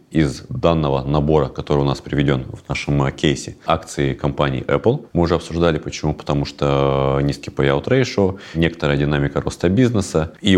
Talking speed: 155 wpm